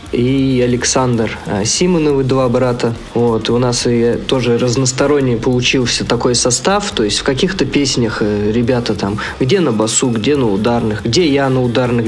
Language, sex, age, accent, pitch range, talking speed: Russian, male, 20-39, native, 115-140 Hz, 160 wpm